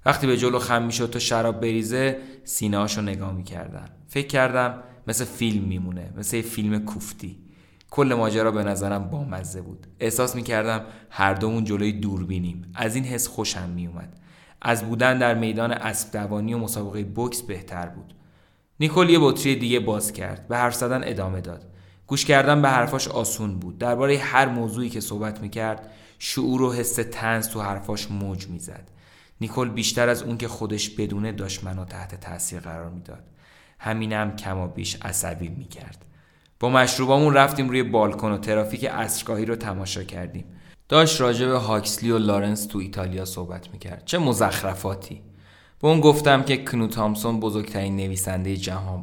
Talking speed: 160 wpm